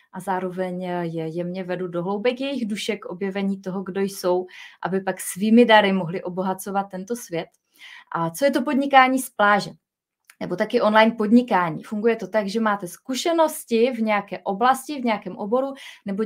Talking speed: 165 wpm